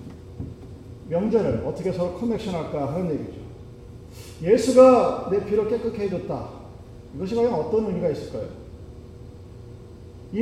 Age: 40-59